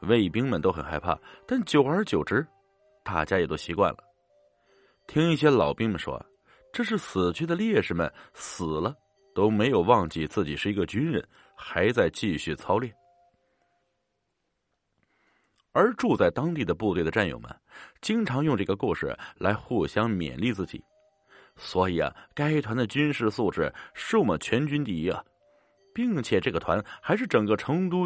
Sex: male